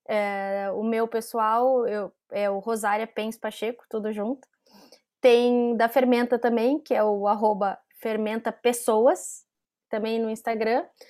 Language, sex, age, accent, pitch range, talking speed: Portuguese, female, 10-29, Brazilian, 230-260 Hz, 130 wpm